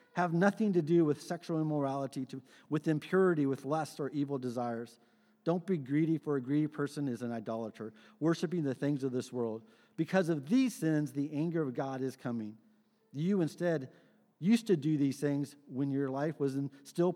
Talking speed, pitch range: 190 wpm, 140-185 Hz